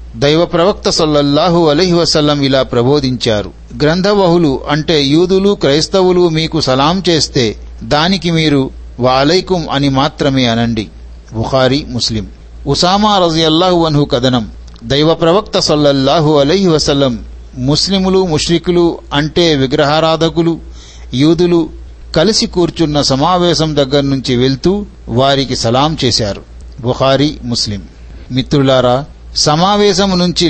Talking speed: 95 wpm